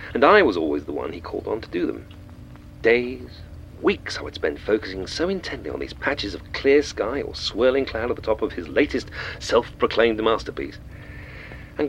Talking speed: 190 wpm